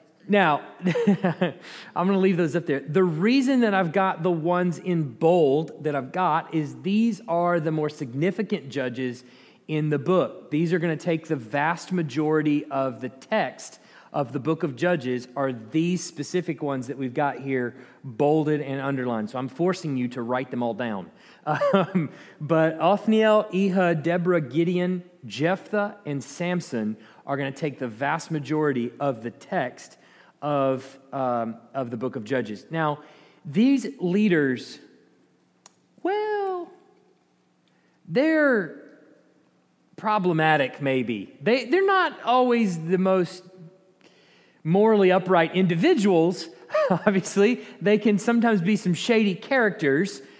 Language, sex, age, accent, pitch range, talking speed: English, male, 40-59, American, 140-195 Hz, 135 wpm